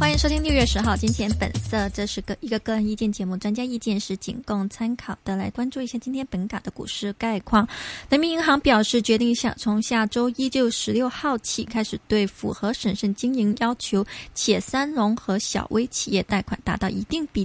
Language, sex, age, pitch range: Chinese, female, 20-39, 200-240 Hz